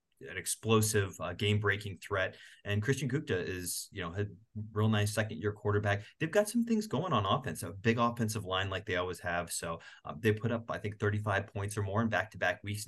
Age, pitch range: 30-49, 95-115 Hz